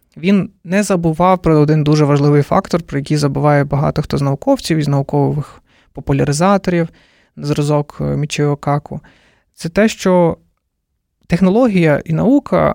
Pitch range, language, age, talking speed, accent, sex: 140-175 Hz, Ukrainian, 20-39, 120 wpm, native, male